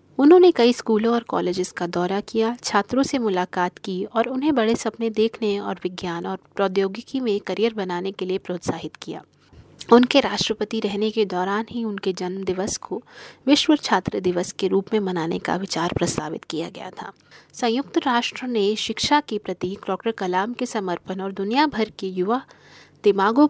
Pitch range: 190-235 Hz